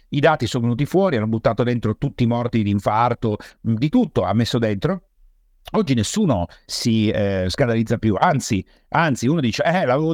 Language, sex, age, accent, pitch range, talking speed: Italian, male, 50-69, native, 110-155 Hz, 180 wpm